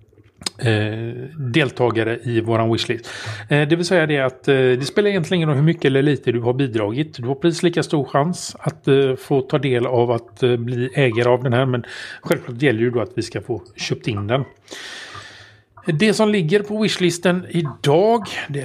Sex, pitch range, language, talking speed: male, 120-175 Hz, Swedish, 180 wpm